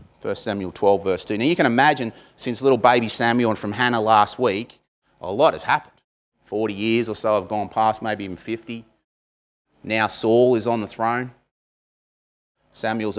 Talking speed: 175 wpm